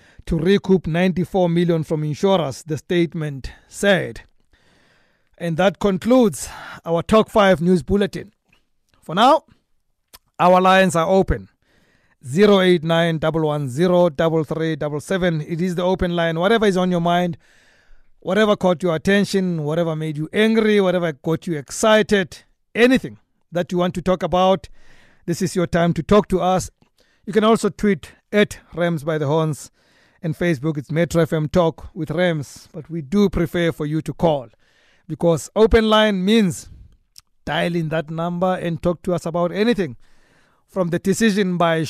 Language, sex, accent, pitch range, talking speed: English, male, South African, 155-190 Hz, 160 wpm